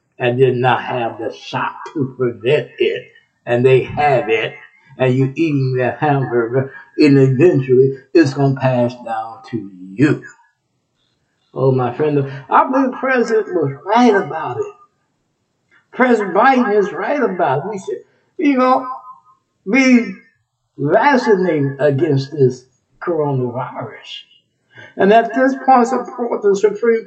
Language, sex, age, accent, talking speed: English, male, 60-79, American, 135 wpm